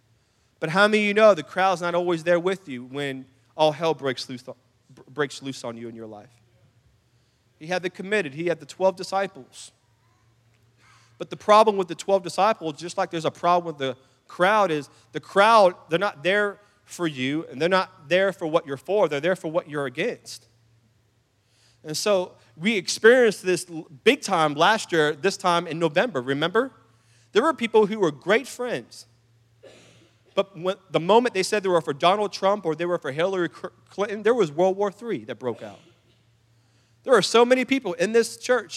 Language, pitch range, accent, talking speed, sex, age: English, 120-195 Hz, American, 190 wpm, male, 30-49